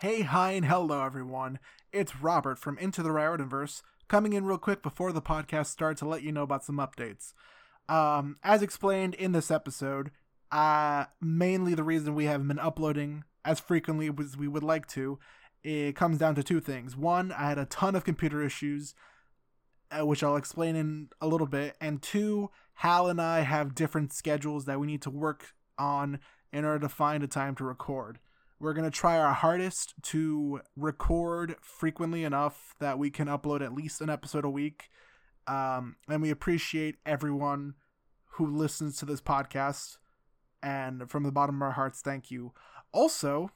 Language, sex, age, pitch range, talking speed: English, male, 20-39, 145-165 Hz, 180 wpm